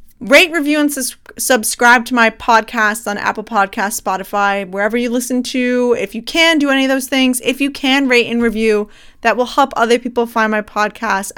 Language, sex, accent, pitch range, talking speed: English, female, American, 215-275 Hz, 200 wpm